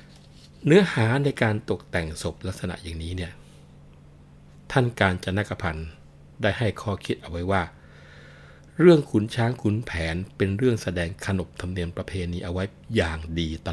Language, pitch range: Thai, 80-105 Hz